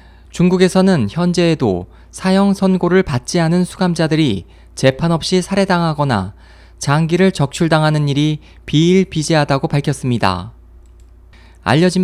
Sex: male